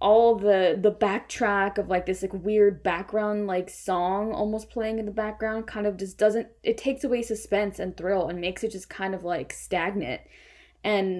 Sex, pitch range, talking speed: female, 190-230 Hz, 195 wpm